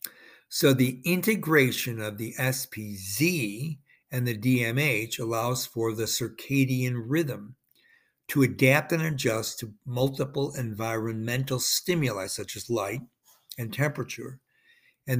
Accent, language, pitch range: American, English, 115-145 Hz